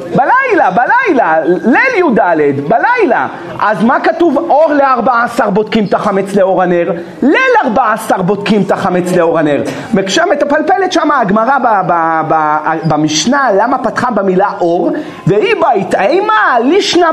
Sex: male